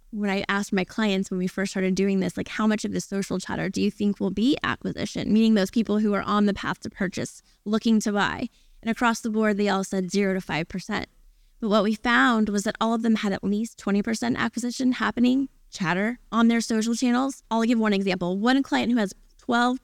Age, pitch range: 20-39, 195-235 Hz